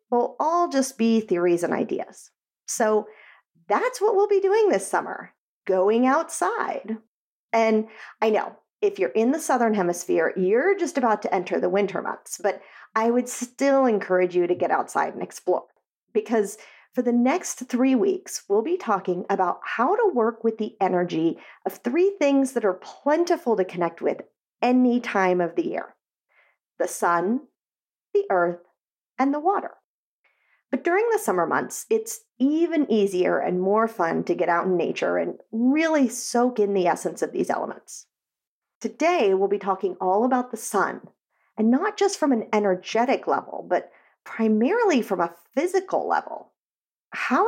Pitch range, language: 195-285 Hz, English